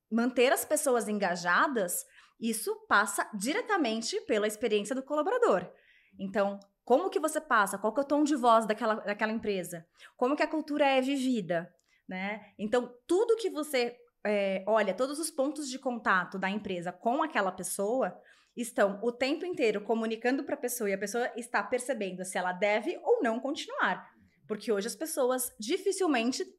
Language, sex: Portuguese, female